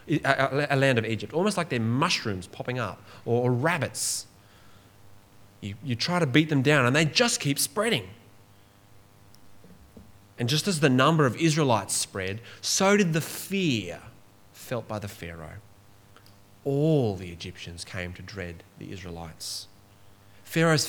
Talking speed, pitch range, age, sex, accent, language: 140 wpm, 100-130 Hz, 20-39, male, Australian, English